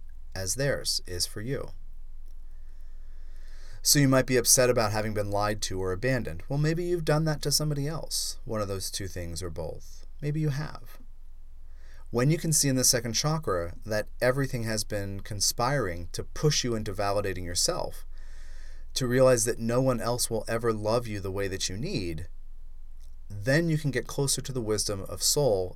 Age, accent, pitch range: 30-49, American, 85-125 Hz